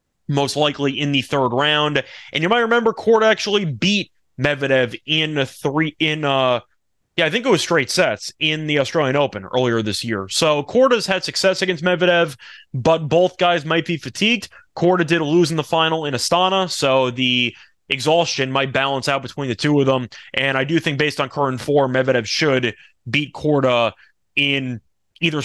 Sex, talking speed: male, 180 wpm